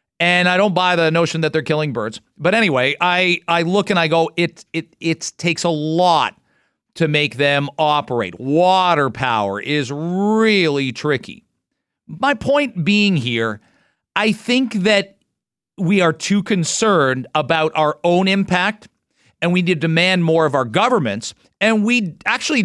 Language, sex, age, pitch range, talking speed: English, male, 40-59, 150-200 Hz, 160 wpm